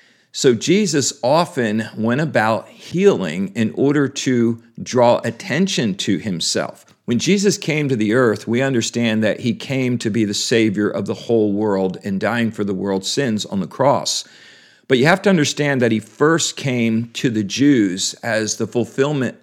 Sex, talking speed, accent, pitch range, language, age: male, 175 wpm, American, 105-135 Hz, English, 50-69